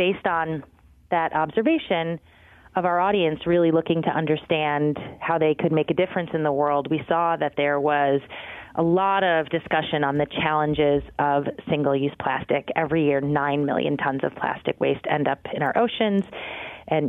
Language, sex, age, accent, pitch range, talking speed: English, female, 30-49, American, 145-170 Hz, 175 wpm